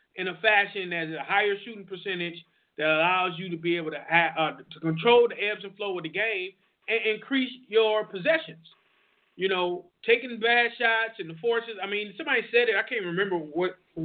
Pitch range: 200-265 Hz